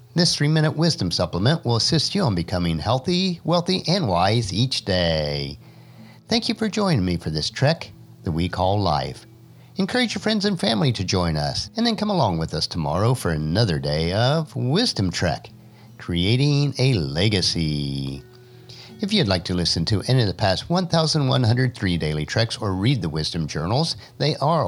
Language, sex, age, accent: English, male, 50-69, American